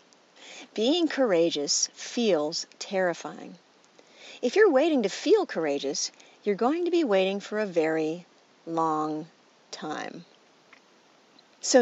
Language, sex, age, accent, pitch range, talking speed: English, female, 50-69, American, 190-280 Hz, 105 wpm